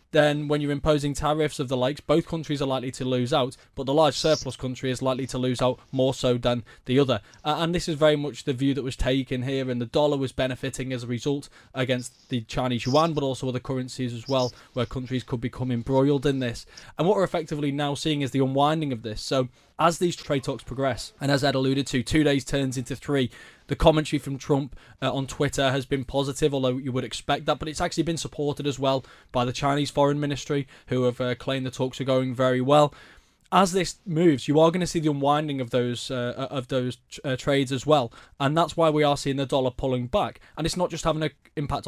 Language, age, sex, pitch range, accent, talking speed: English, 20-39, male, 130-150 Hz, British, 240 wpm